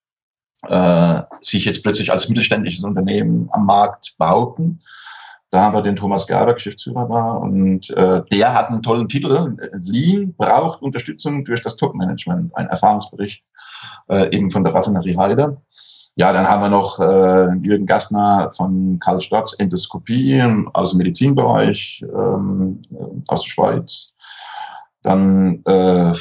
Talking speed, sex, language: 135 wpm, male, German